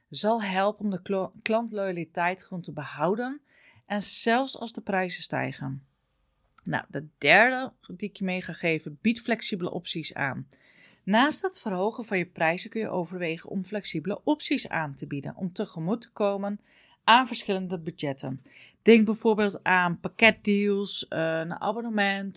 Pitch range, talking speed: 175-225 Hz, 145 wpm